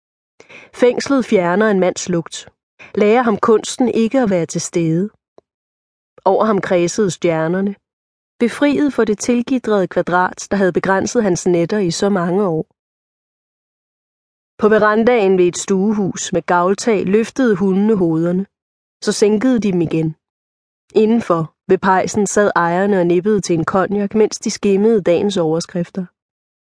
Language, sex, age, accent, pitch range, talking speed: Danish, female, 30-49, native, 175-220 Hz, 135 wpm